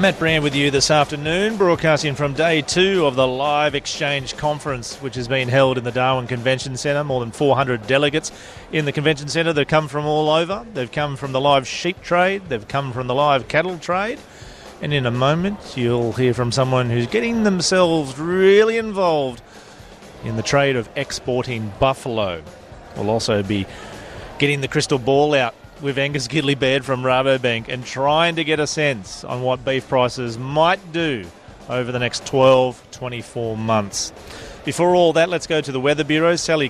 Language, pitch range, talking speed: English, 130-160 Hz, 180 wpm